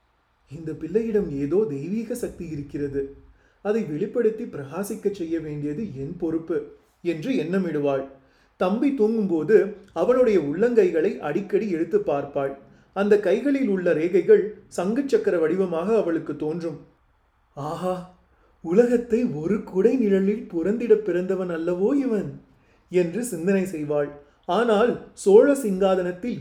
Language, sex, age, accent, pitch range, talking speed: Tamil, male, 30-49, native, 160-215 Hz, 100 wpm